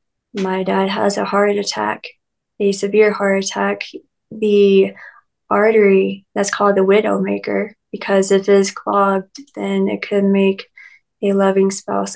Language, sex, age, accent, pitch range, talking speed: English, female, 20-39, American, 195-210 Hz, 140 wpm